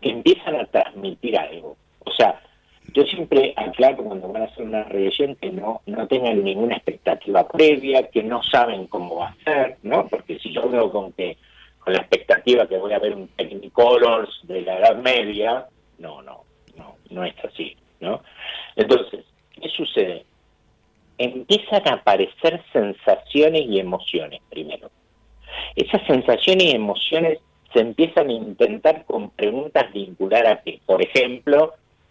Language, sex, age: Spanish, male, 50-69